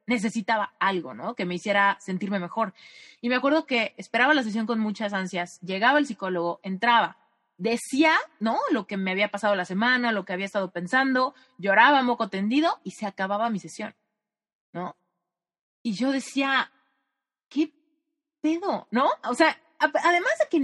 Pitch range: 200-275 Hz